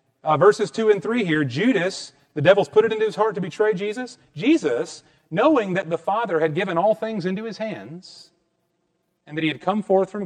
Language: English